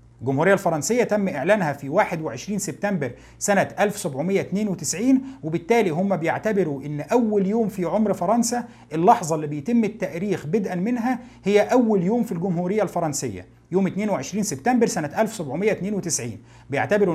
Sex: male